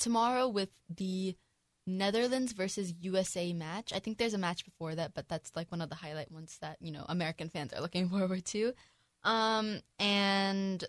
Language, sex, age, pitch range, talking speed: English, female, 10-29, 170-205 Hz, 180 wpm